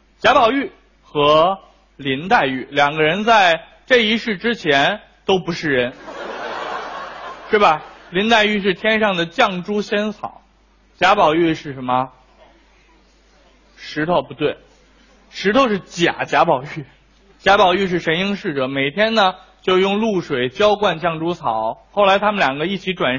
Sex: male